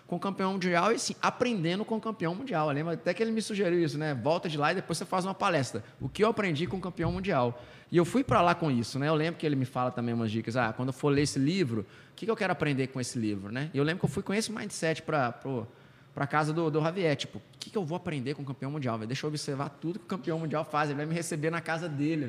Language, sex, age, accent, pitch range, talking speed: Portuguese, male, 20-39, Brazilian, 135-185 Hz, 300 wpm